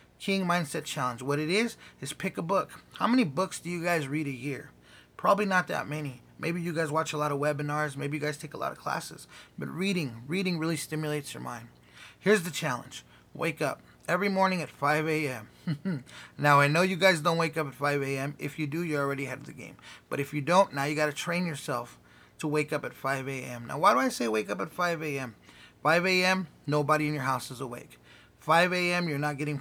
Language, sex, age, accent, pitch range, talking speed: English, male, 20-39, American, 140-180 Hz, 235 wpm